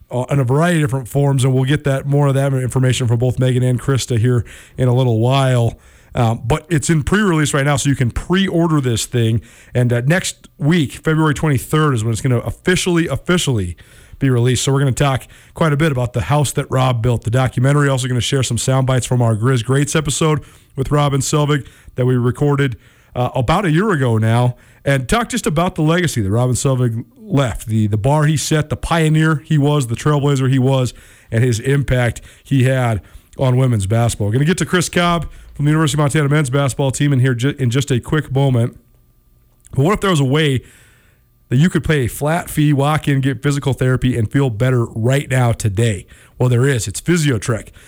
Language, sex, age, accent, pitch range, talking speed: English, male, 40-59, American, 120-150 Hz, 220 wpm